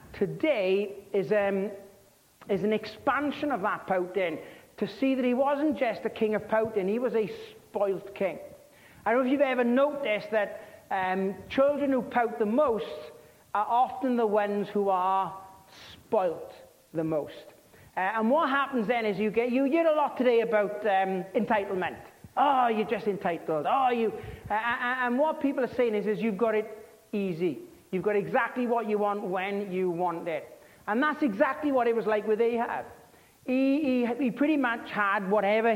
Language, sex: English, male